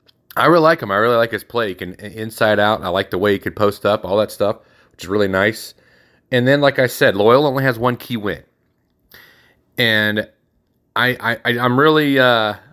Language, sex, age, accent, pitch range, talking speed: English, male, 30-49, American, 95-125 Hz, 210 wpm